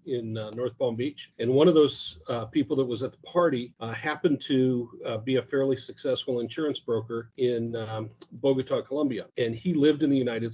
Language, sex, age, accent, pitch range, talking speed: English, male, 40-59, American, 120-150 Hz, 205 wpm